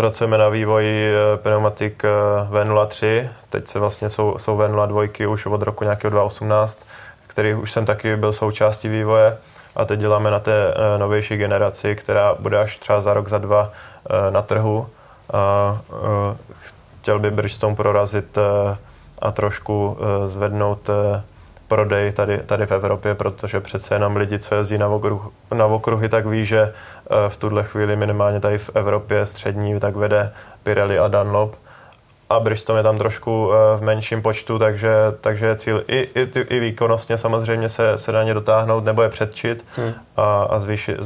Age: 20-39